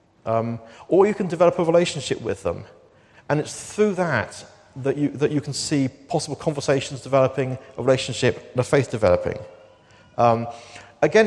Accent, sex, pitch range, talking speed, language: British, male, 115-140 Hz, 160 wpm, English